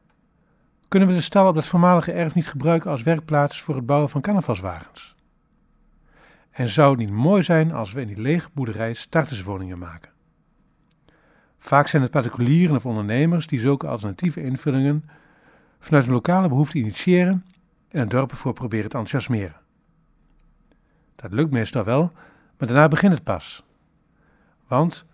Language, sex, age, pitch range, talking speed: Dutch, male, 50-69, 115-150 Hz, 150 wpm